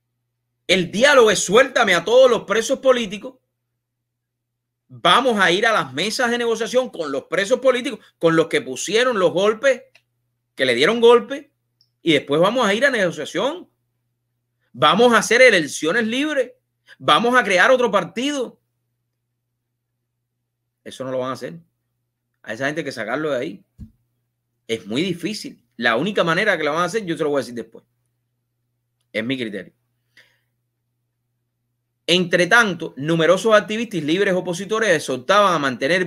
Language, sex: English, male